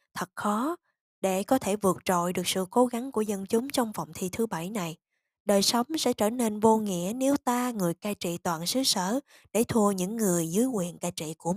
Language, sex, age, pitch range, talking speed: Vietnamese, female, 20-39, 180-235 Hz, 230 wpm